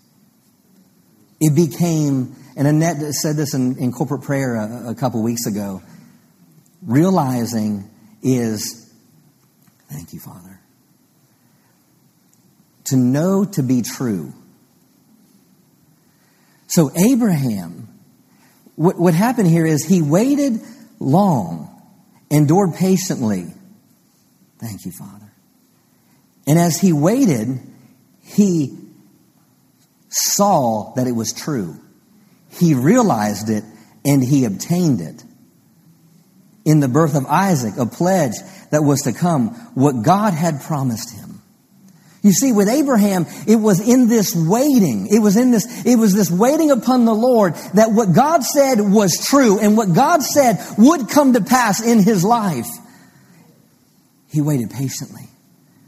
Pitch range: 135-210 Hz